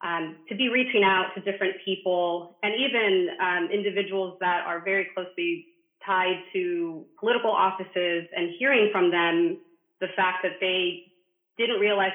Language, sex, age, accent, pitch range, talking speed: English, female, 30-49, American, 175-210 Hz, 150 wpm